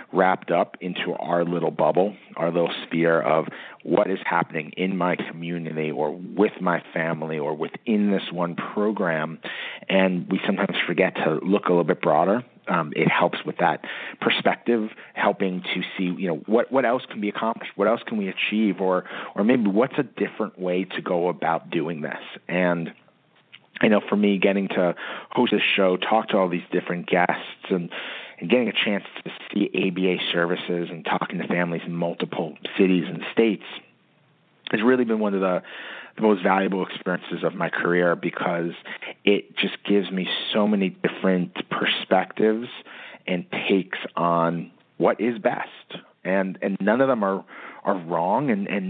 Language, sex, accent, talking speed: English, male, American, 175 wpm